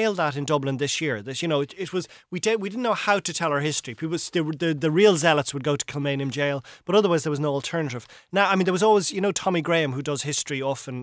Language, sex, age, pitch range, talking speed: English, male, 30-49, 130-160 Hz, 290 wpm